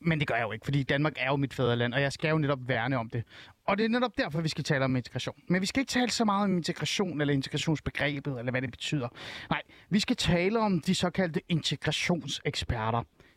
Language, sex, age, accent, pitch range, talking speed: Danish, male, 30-49, native, 130-180 Hz, 240 wpm